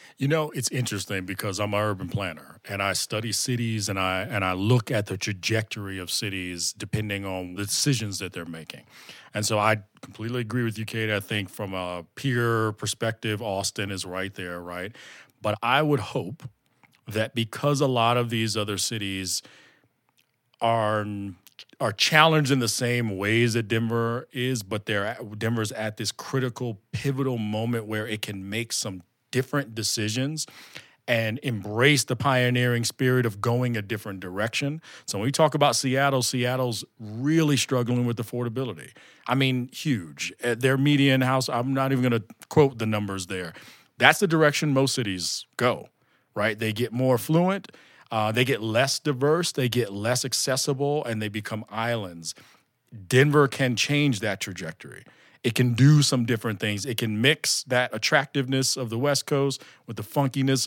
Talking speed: 170 wpm